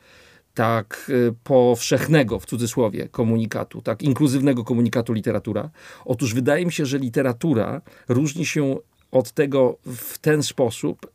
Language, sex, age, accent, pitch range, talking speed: Polish, male, 50-69, native, 120-150 Hz, 120 wpm